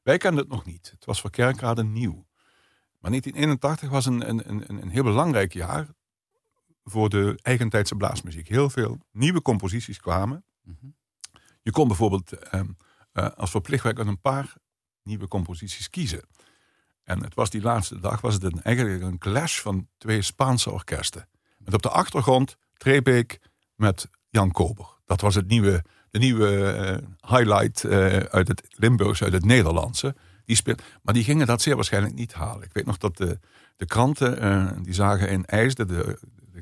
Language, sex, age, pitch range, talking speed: Dutch, male, 50-69, 95-125 Hz, 170 wpm